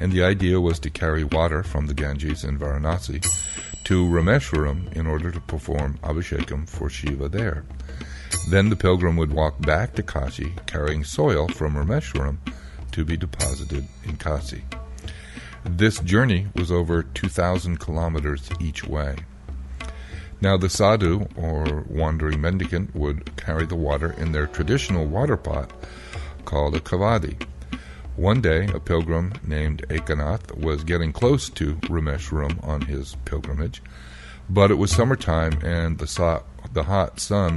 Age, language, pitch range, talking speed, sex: 60-79, English, 75-90 Hz, 140 wpm, male